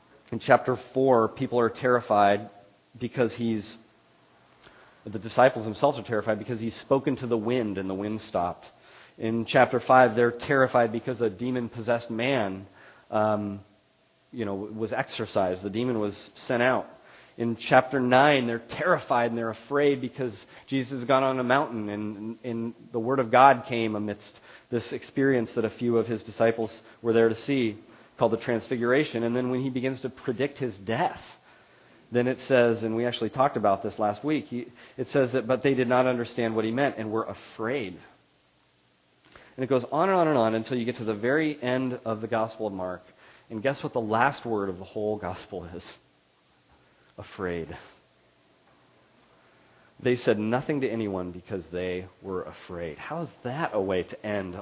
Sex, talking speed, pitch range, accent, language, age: male, 180 wpm, 110-130 Hz, American, English, 30-49